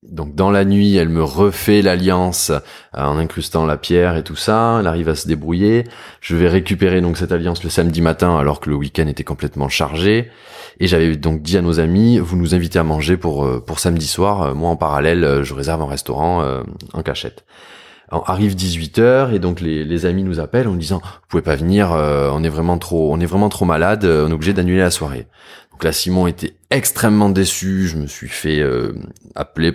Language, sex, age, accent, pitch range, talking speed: French, male, 20-39, French, 80-100 Hz, 220 wpm